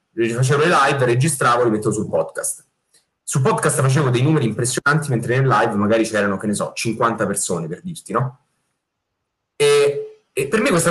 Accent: native